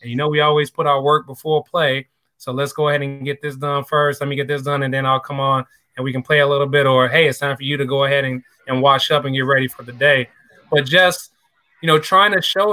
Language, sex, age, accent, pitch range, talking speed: English, male, 20-39, American, 135-160 Hz, 290 wpm